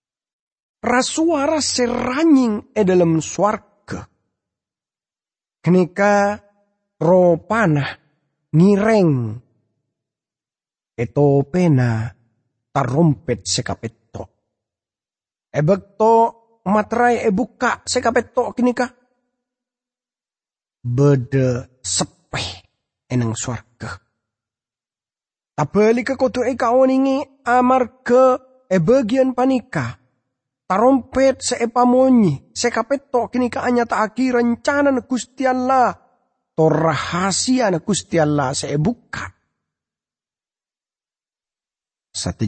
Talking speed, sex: 70 wpm, male